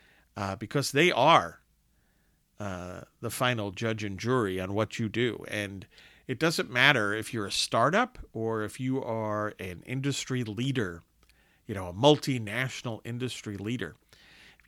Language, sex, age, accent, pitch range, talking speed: English, male, 50-69, American, 100-130 Hz, 145 wpm